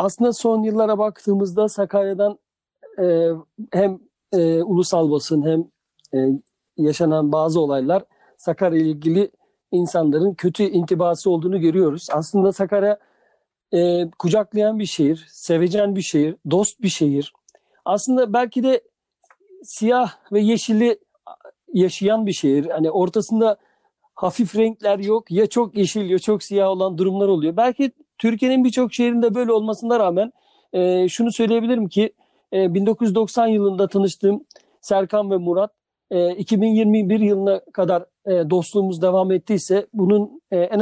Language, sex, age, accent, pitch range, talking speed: Turkish, male, 50-69, native, 180-220 Hz, 120 wpm